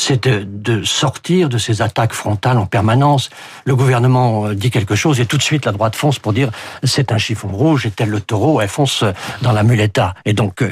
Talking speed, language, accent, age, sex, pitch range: 230 wpm, French, French, 60-79, male, 115-150 Hz